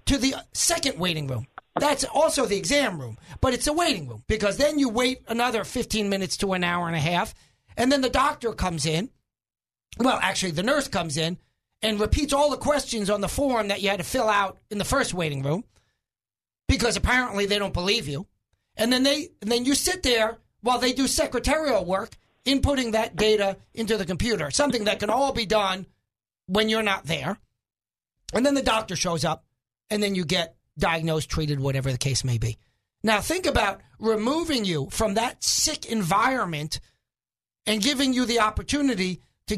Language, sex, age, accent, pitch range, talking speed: English, male, 40-59, American, 185-260 Hz, 190 wpm